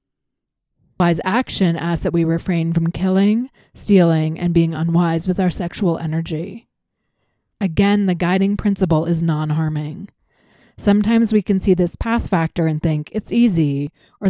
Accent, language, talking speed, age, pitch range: American, English, 145 wpm, 30-49, 160-195 Hz